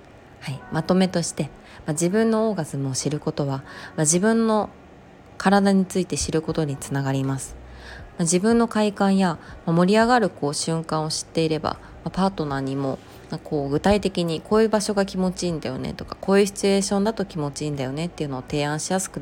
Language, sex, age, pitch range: Japanese, female, 20-39, 140-185 Hz